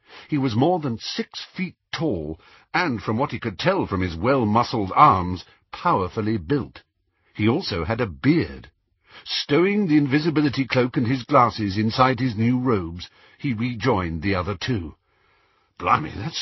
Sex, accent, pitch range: male, British, 95-135 Hz